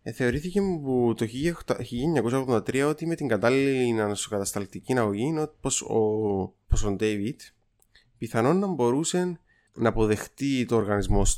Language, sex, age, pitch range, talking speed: Greek, male, 20-39, 105-140 Hz, 115 wpm